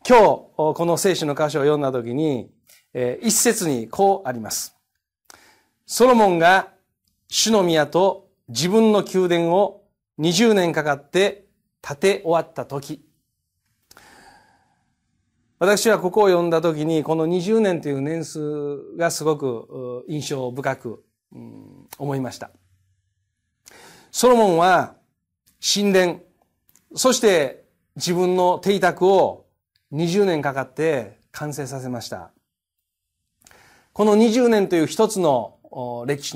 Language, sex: Japanese, male